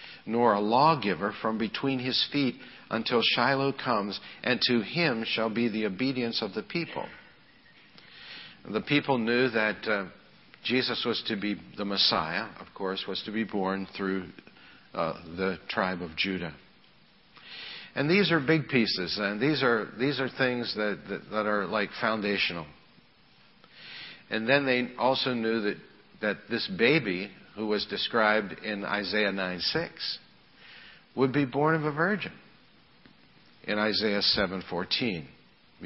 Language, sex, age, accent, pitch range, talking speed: English, male, 60-79, American, 95-125 Hz, 140 wpm